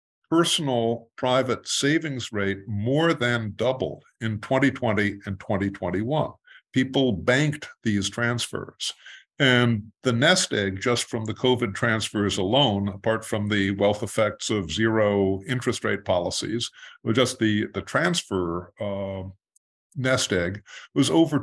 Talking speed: 125 wpm